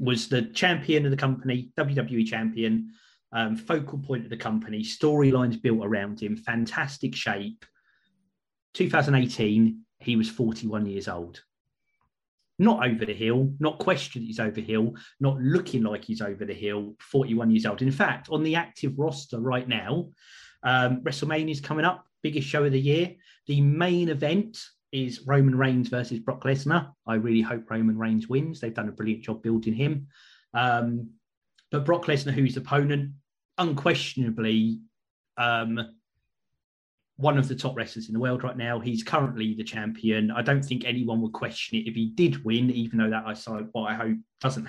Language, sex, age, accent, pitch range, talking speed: English, male, 30-49, British, 115-145 Hz, 170 wpm